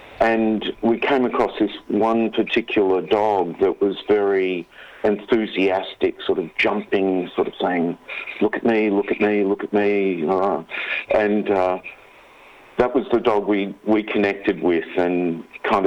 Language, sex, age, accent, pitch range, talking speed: English, male, 50-69, Australian, 95-115 Hz, 150 wpm